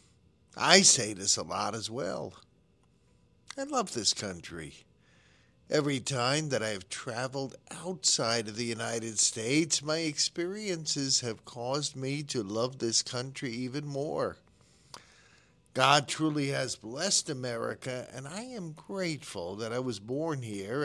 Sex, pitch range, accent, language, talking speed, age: male, 110-150 Hz, American, English, 135 wpm, 50-69